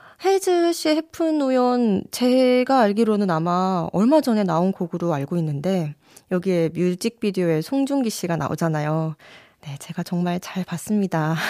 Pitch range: 185-270 Hz